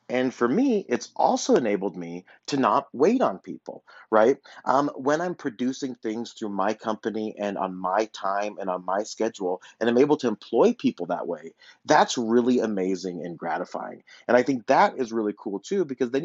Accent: American